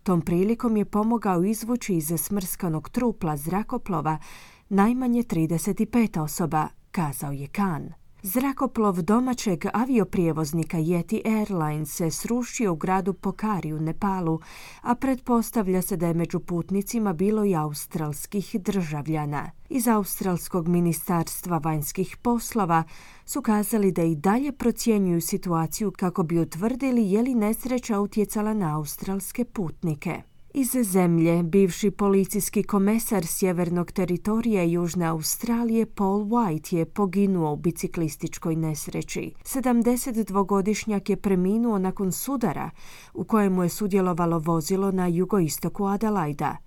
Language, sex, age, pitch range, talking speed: Croatian, female, 30-49, 170-215 Hz, 115 wpm